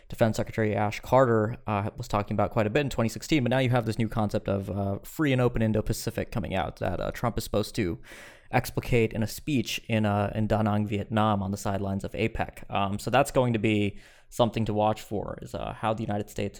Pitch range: 105-125 Hz